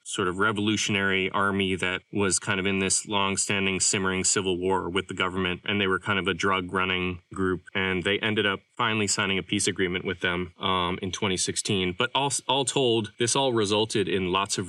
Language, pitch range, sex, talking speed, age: English, 95-115 Hz, male, 205 wpm, 20-39